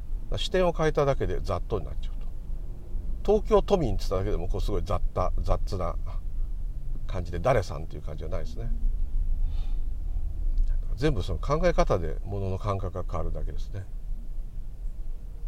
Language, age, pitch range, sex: Japanese, 50-69, 85-130 Hz, male